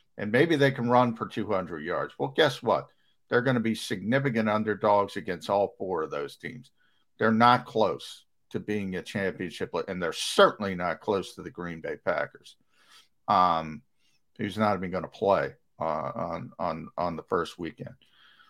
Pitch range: 105-155 Hz